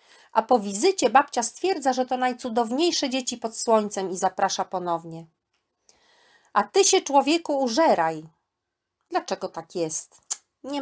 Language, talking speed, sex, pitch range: Polish, 130 wpm, female, 190-255 Hz